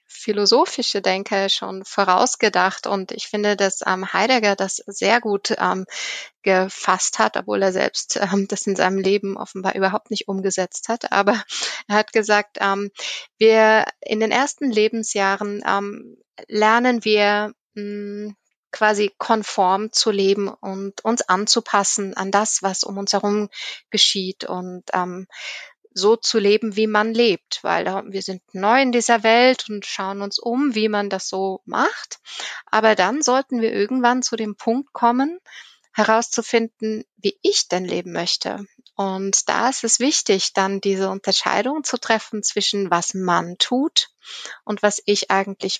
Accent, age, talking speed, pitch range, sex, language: German, 20-39, 150 wpm, 195-230 Hz, female, German